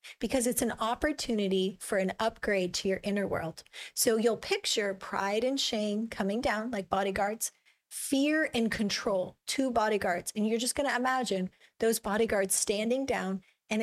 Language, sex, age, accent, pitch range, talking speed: English, female, 40-59, American, 200-235 Hz, 160 wpm